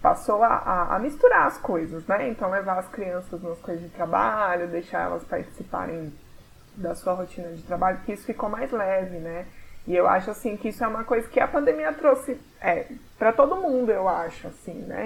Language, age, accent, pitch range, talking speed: Portuguese, 20-39, Brazilian, 175-235 Hz, 205 wpm